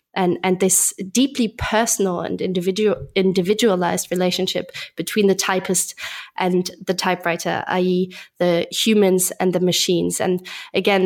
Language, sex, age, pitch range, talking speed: English, female, 20-39, 180-205 Hz, 120 wpm